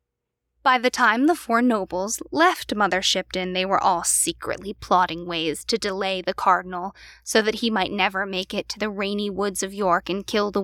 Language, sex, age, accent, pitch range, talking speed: English, female, 10-29, American, 180-235 Hz, 195 wpm